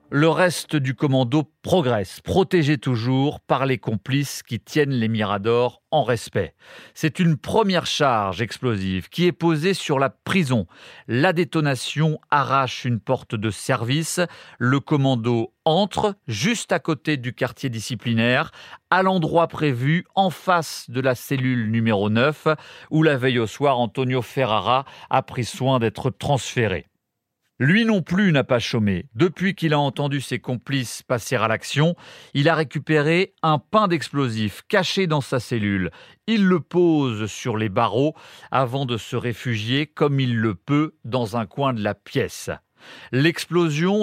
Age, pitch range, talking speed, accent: 40-59, 120-155 Hz, 150 wpm, French